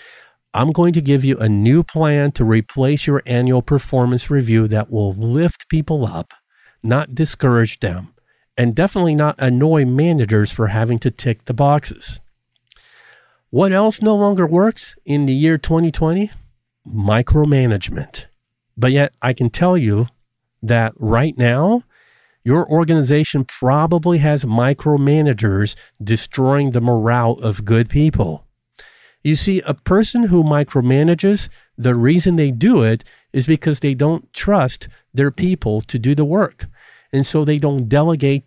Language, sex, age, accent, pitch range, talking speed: English, male, 50-69, American, 120-160 Hz, 140 wpm